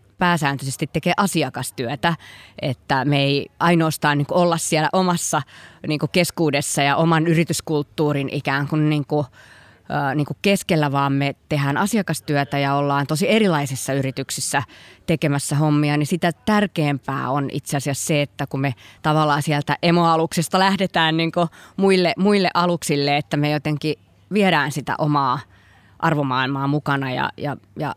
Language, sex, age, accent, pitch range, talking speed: Finnish, female, 20-39, native, 140-175 Hz, 135 wpm